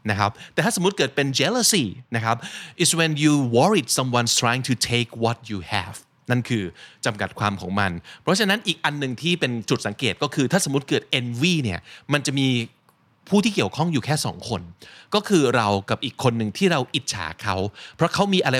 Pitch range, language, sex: 115-165 Hz, Thai, male